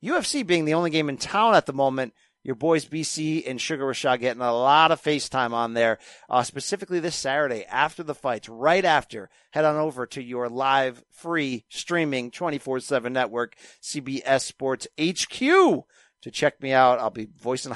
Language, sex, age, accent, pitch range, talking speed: English, male, 40-59, American, 135-205 Hz, 175 wpm